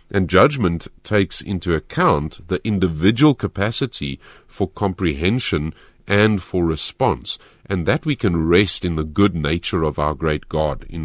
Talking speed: 145 wpm